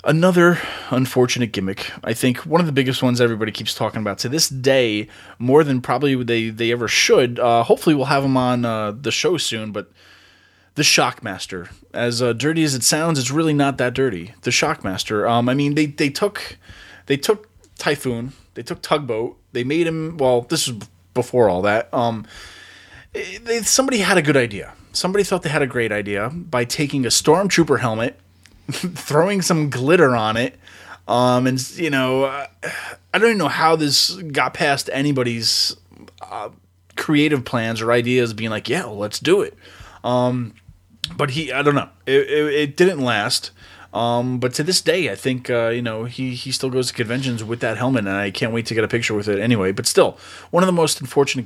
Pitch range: 115-150 Hz